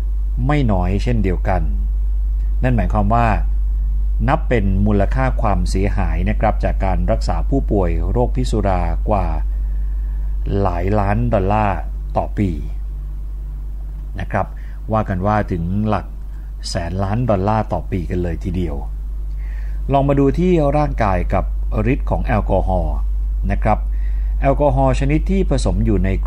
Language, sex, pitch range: Thai, male, 80-110 Hz